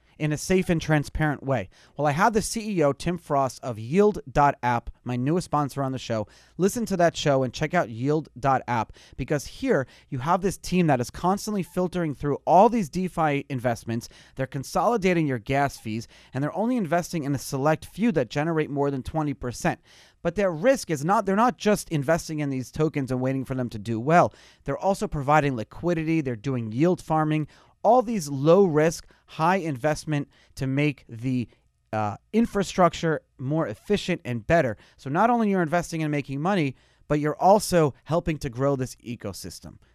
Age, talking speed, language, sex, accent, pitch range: 30-49, 180 wpm, English, male, American, 130-175 Hz